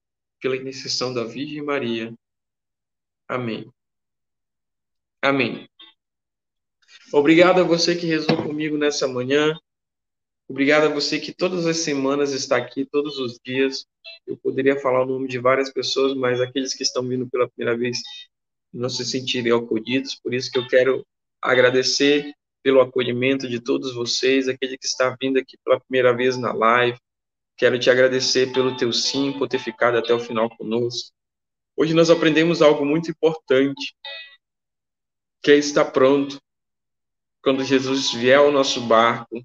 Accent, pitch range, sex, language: Brazilian, 120-140 Hz, male, Portuguese